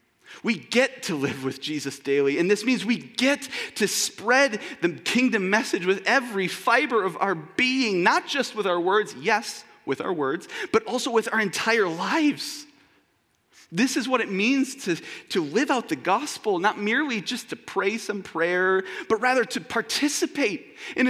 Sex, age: male, 30-49